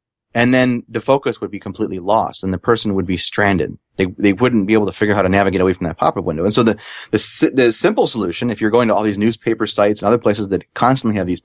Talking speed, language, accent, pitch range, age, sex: 275 wpm, English, American, 100-120 Hz, 30-49, male